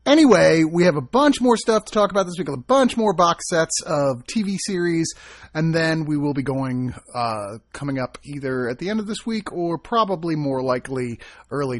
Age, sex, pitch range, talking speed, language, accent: 30-49, male, 115-180 Hz, 210 wpm, English, American